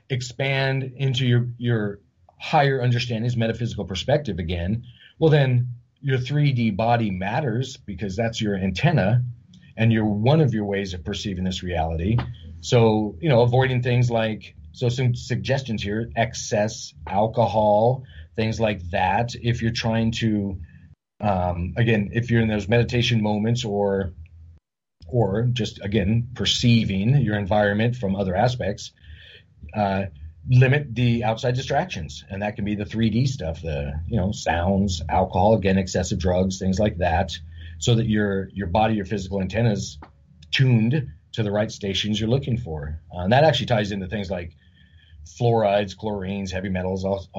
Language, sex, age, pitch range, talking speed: English, male, 40-59, 95-120 Hz, 150 wpm